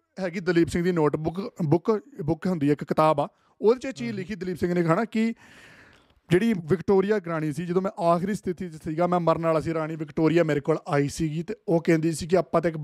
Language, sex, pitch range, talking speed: Punjabi, male, 155-185 Hz, 235 wpm